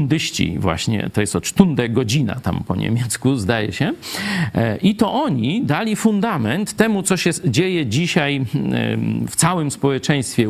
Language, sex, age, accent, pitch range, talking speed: Polish, male, 40-59, native, 115-150 Hz, 135 wpm